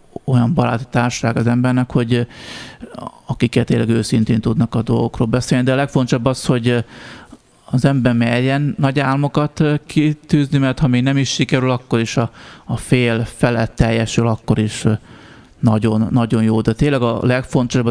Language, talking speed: Hungarian, 145 wpm